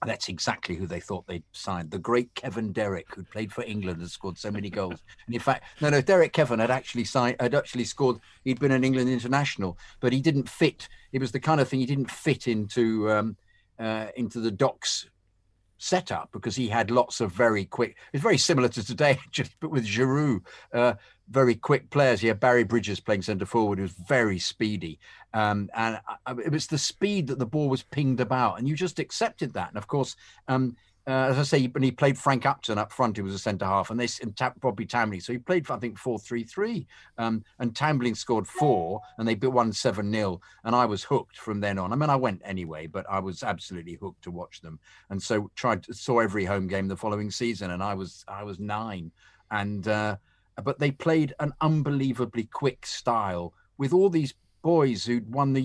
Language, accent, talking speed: English, British, 220 wpm